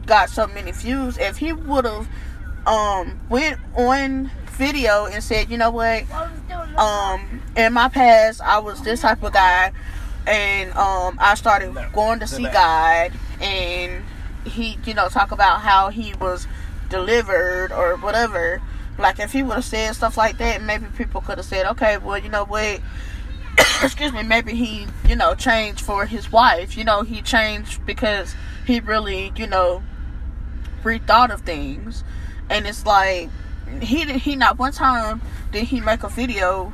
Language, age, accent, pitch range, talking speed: English, 10-29, American, 190-235 Hz, 165 wpm